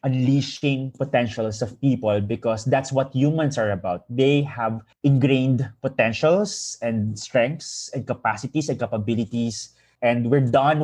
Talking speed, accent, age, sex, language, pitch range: 125 wpm, native, 20-39, male, Filipino, 115-145 Hz